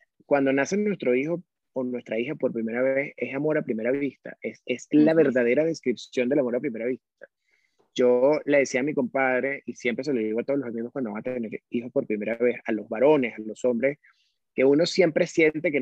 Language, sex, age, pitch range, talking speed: Spanish, male, 30-49, 125-155 Hz, 225 wpm